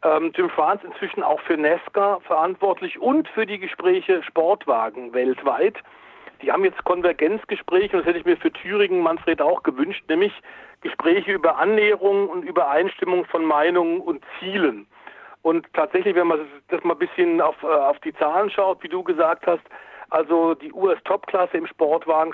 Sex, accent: male, German